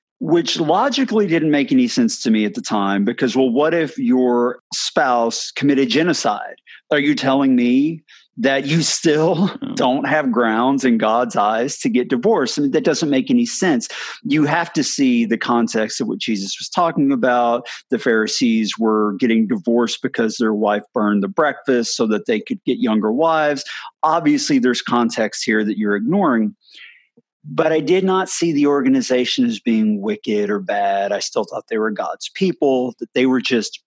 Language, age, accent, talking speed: English, 40-59, American, 180 wpm